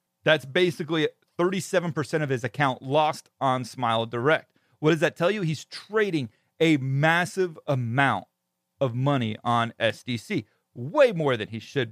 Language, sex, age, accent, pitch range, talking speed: English, male, 40-59, American, 125-165 Hz, 145 wpm